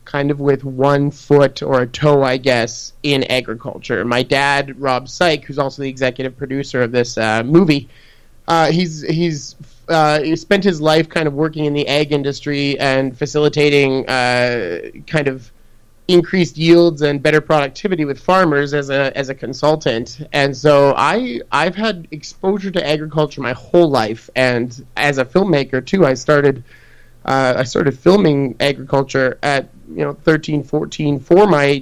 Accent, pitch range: American, 130-155 Hz